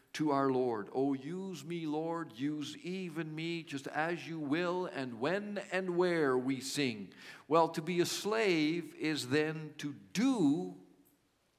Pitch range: 145-175 Hz